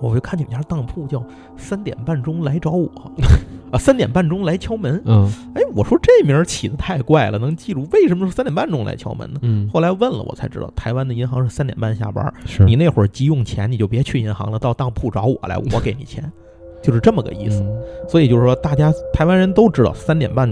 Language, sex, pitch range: Chinese, male, 110-160 Hz